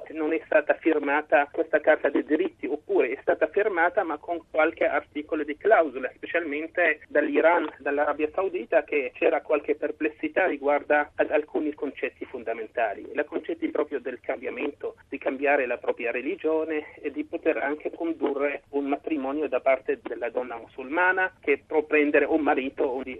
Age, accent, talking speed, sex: 40-59, native, 145 wpm, male